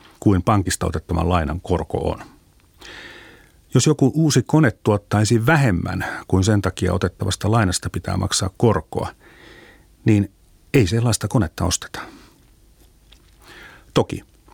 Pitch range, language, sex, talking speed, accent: 90-125 Hz, Finnish, male, 105 wpm, native